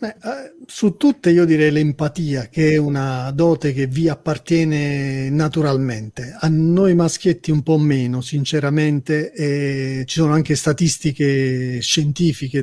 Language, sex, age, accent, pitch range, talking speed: Italian, male, 40-59, native, 140-160 Hz, 130 wpm